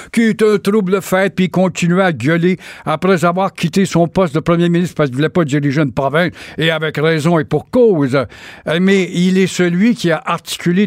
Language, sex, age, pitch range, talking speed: French, male, 60-79, 150-190 Hz, 215 wpm